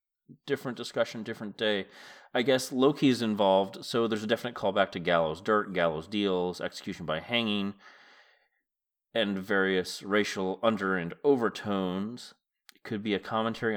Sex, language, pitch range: male, English, 95-120 Hz